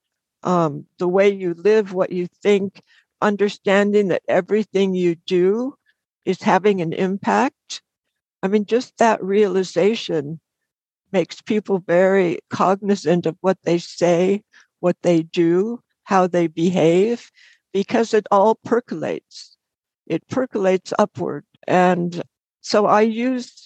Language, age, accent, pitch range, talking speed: English, 60-79, American, 170-205 Hz, 120 wpm